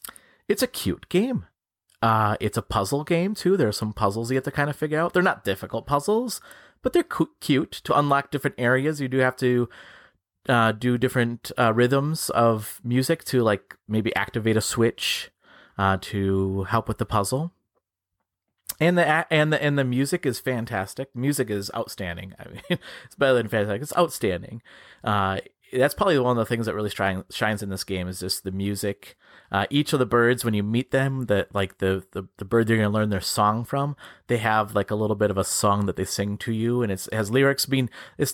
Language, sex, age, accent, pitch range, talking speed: English, male, 30-49, American, 100-130 Hz, 215 wpm